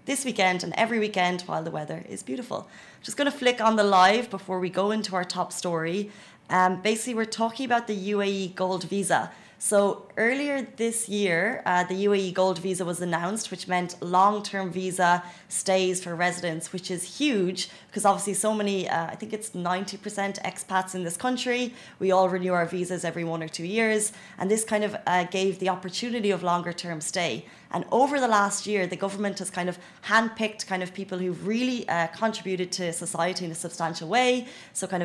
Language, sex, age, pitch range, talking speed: Arabic, female, 20-39, 180-215 Hz, 200 wpm